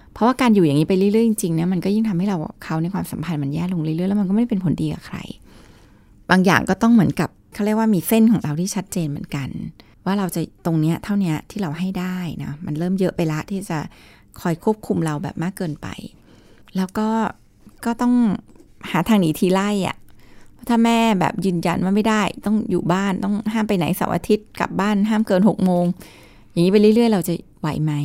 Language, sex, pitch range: Thai, female, 170-210 Hz